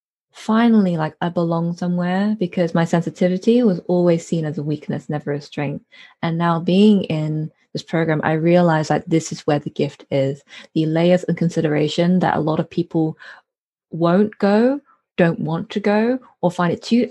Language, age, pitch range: English, 20-39, 165-215 Hz